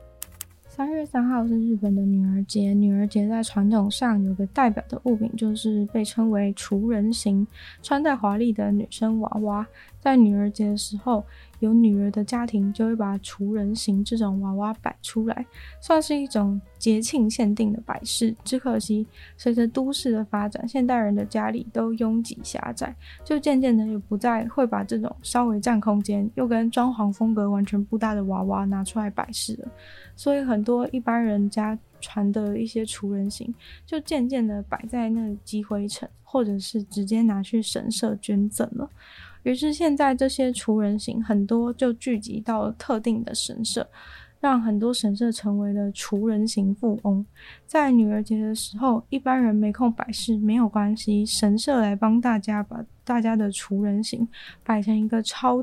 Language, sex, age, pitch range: Chinese, female, 20-39, 205-240 Hz